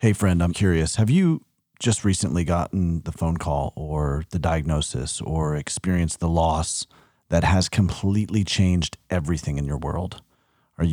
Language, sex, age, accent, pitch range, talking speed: English, male, 30-49, American, 85-110 Hz, 155 wpm